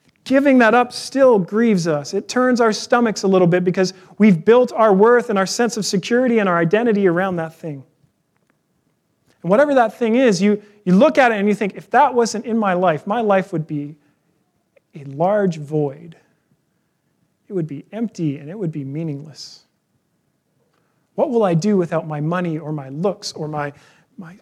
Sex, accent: male, American